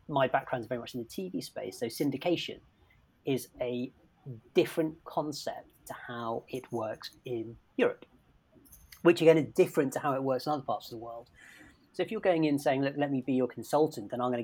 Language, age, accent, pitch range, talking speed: English, 30-49, British, 120-150 Hz, 210 wpm